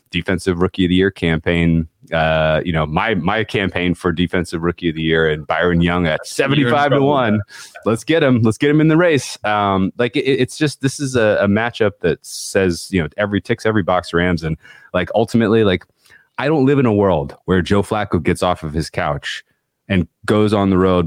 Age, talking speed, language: 30-49, 215 wpm, English